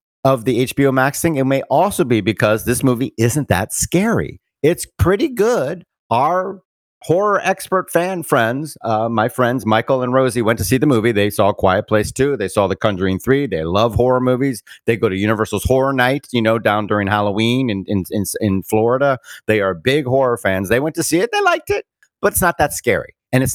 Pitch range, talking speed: 100-135 Hz, 210 wpm